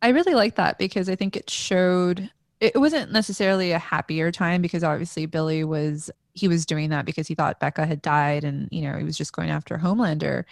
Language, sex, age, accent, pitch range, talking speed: English, female, 20-39, American, 165-195 Hz, 215 wpm